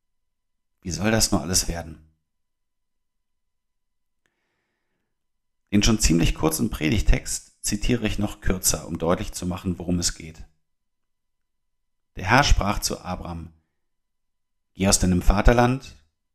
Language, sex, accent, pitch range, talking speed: German, male, German, 85-105 Hz, 115 wpm